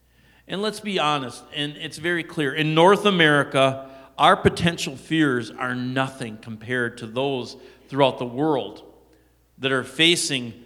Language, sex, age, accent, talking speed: English, male, 50-69, American, 140 wpm